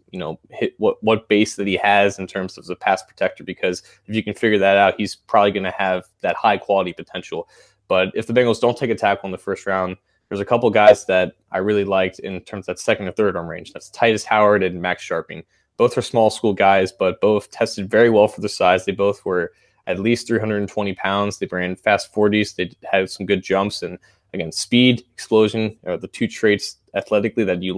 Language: English